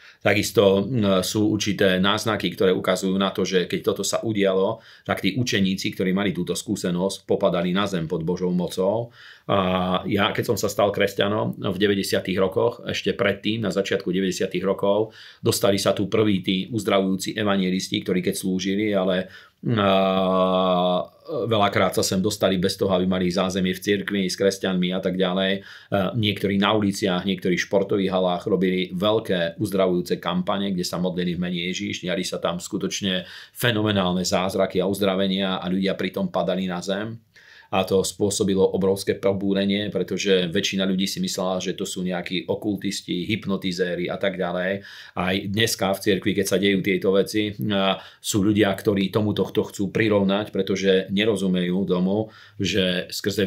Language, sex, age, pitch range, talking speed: Slovak, male, 40-59, 95-100 Hz, 160 wpm